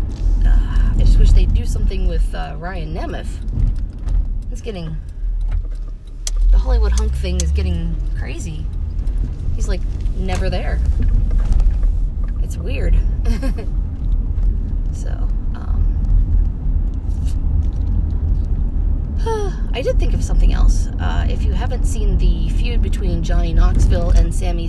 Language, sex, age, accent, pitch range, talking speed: English, female, 20-39, American, 75-90 Hz, 105 wpm